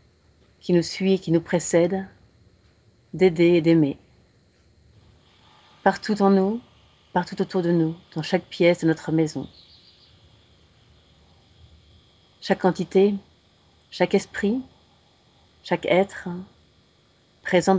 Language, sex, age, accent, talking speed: French, female, 40-59, French, 100 wpm